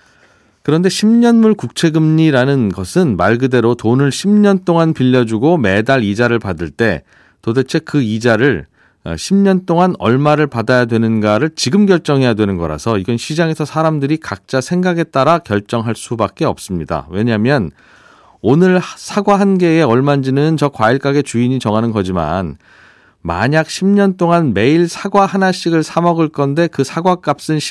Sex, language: male, Korean